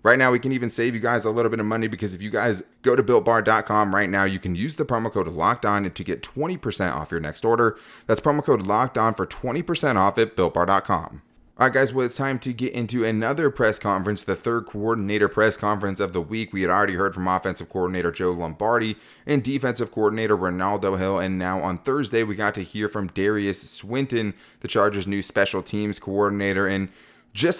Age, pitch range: 30-49, 95-120 Hz